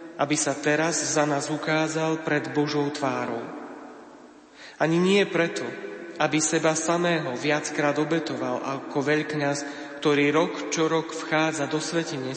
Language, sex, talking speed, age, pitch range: Slovak, male, 125 wpm, 30-49, 150-165 Hz